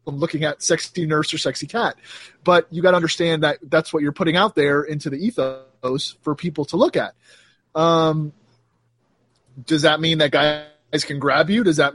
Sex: male